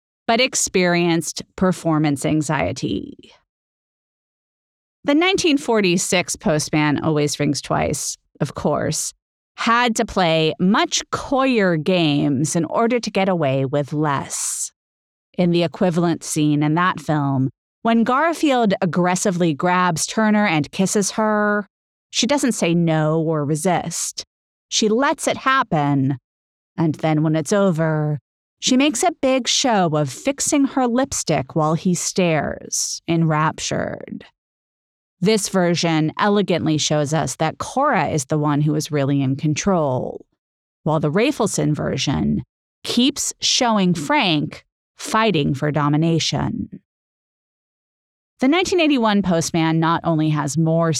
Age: 30-49